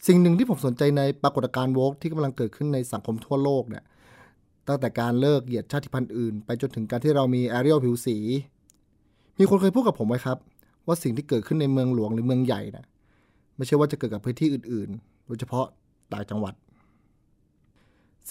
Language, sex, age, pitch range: Thai, male, 30-49, 120-150 Hz